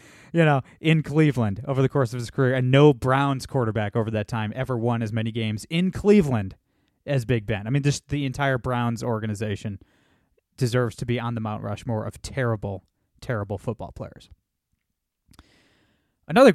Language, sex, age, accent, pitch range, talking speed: English, male, 20-39, American, 115-155 Hz, 170 wpm